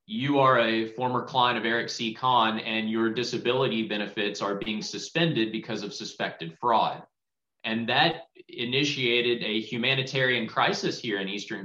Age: 20-39